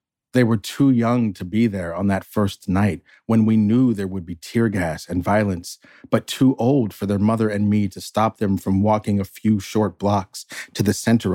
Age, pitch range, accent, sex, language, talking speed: 40-59, 95-115 Hz, American, male, English, 215 wpm